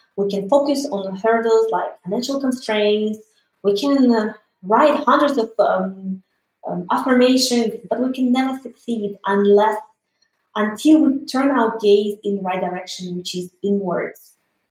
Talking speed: 140 wpm